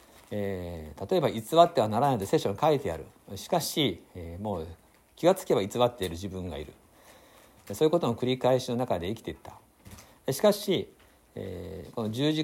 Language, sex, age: Japanese, male, 60-79